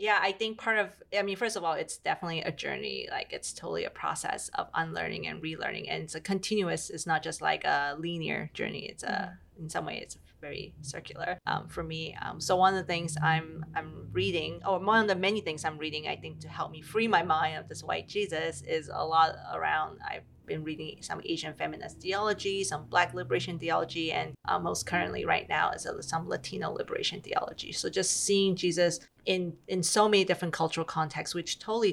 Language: English